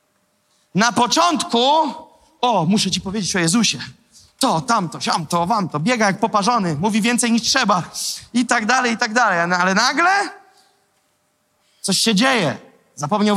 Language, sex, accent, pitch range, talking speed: Polish, male, native, 180-230 Hz, 150 wpm